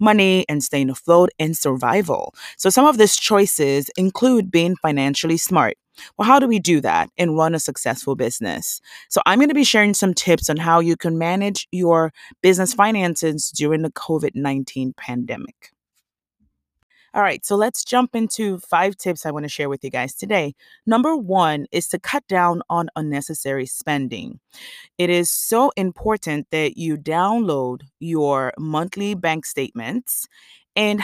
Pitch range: 150-195 Hz